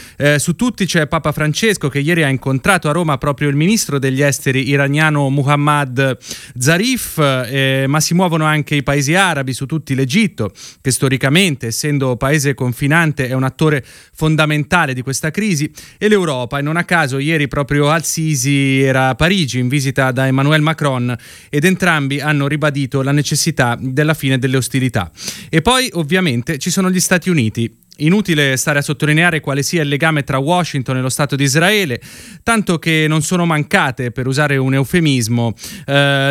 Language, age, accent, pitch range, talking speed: Italian, 30-49, native, 135-160 Hz, 170 wpm